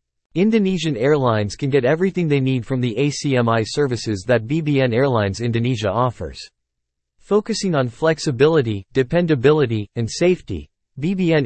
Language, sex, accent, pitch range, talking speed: English, male, American, 115-150 Hz, 120 wpm